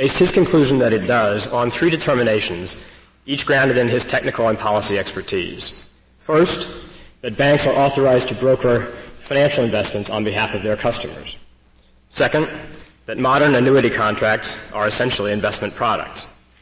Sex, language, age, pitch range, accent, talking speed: male, English, 30-49, 95-120 Hz, American, 145 wpm